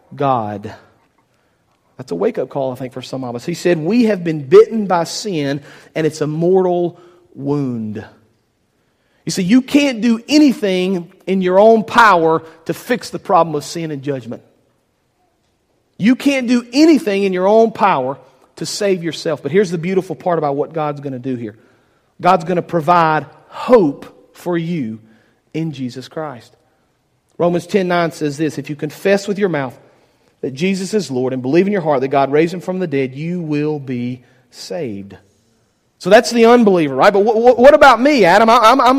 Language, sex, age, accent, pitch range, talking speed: English, male, 40-59, American, 150-225 Hz, 180 wpm